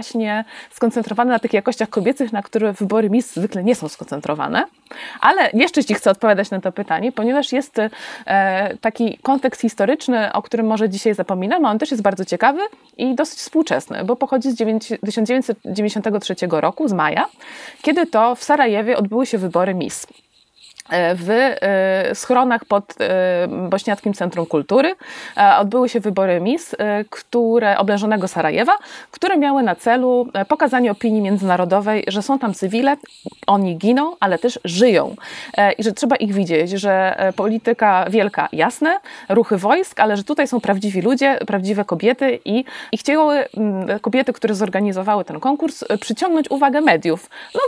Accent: native